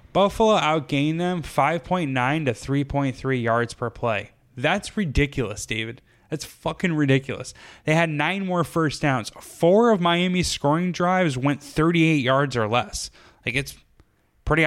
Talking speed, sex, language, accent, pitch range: 140 wpm, male, English, American, 125-165 Hz